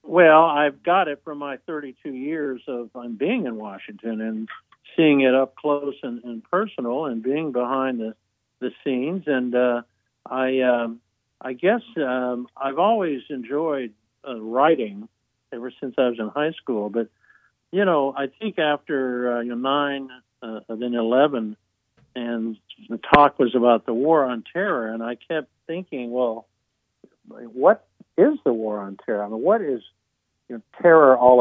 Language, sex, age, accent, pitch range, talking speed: English, male, 60-79, American, 115-140 Hz, 160 wpm